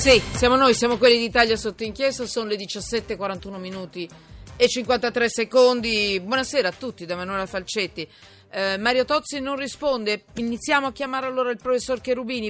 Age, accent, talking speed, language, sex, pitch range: 40-59, native, 160 wpm, Italian, female, 180-235 Hz